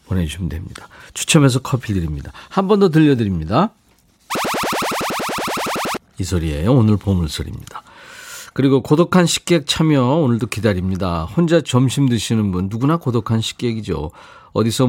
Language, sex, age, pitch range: Korean, male, 40-59, 95-140 Hz